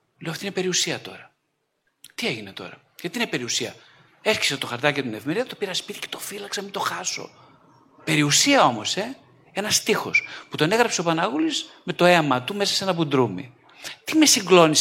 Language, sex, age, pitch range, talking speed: Greek, male, 50-69, 125-195 Hz, 185 wpm